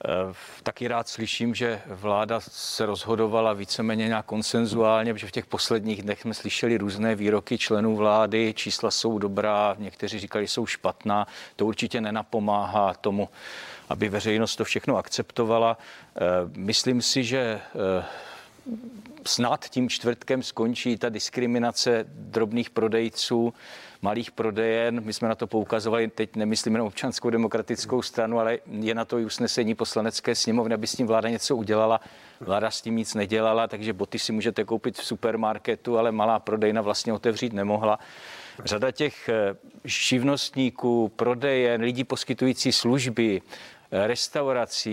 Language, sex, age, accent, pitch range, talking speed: Czech, male, 40-59, native, 110-125 Hz, 135 wpm